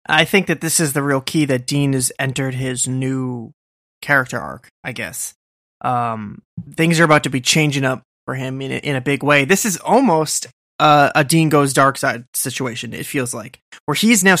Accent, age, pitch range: American, 20-39, 130-155 Hz